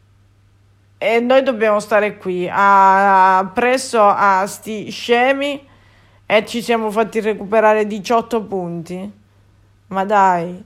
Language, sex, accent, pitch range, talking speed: Italian, female, native, 190-245 Hz, 105 wpm